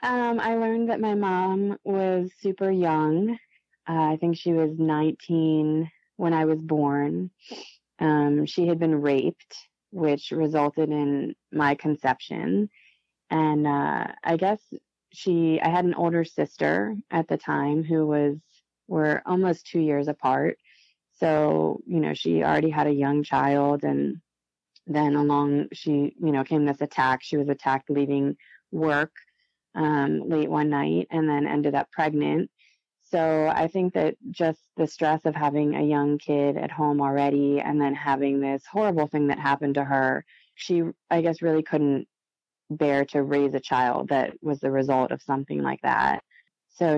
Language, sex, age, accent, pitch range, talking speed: English, female, 20-39, American, 140-165 Hz, 160 wpm